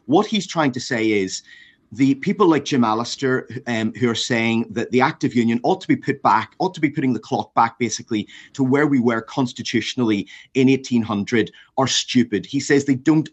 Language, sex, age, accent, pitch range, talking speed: English, male, 30-49, British, 115-145 Hz, 205 wpm